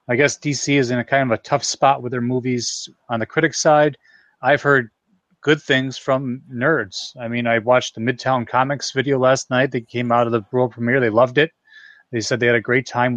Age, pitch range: 30-49, 120-145 Hz